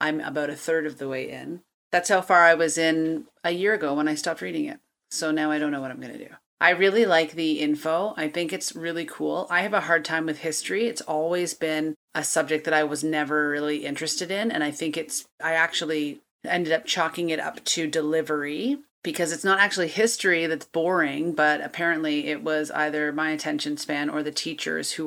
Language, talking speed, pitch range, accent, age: English, 225 wpm, 150-175 Hz, American, 30-49